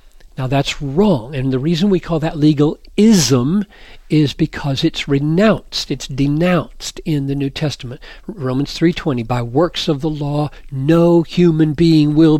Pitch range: 130-160 Hz